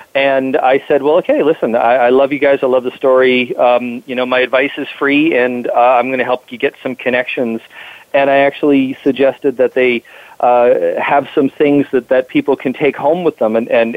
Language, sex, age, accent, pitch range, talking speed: English, male, 40-59, American, 120-135 Hz, 225 wpm